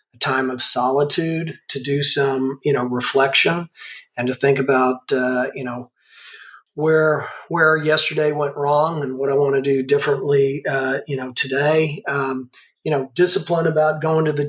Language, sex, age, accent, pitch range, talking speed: English, male, 40-59, American, 135-150 Hz, 165 wpm